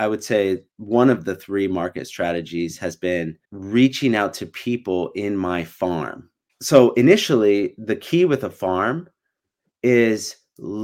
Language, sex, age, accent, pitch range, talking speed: English, male, 30-49, American, 95-130 Hz, 145 wpm